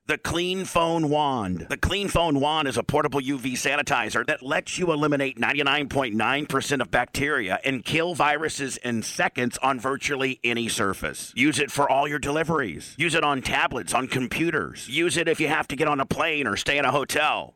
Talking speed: 190 wpm